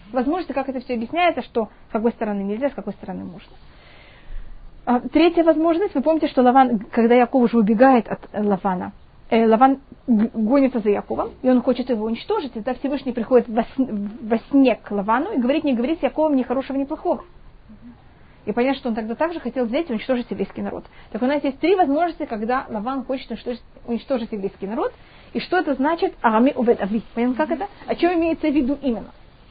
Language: Russian